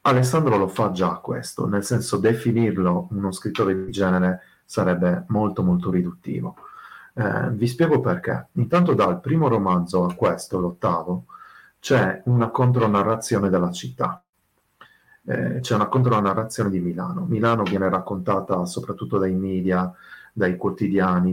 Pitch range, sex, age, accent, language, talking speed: 90-115 Hz, male, 30-49, native, Italian, 130 wpm